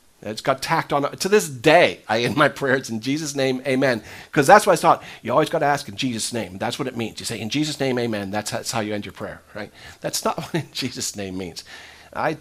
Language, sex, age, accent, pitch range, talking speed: English, male, 40-59, American, 115-160 Hz, 260 wpm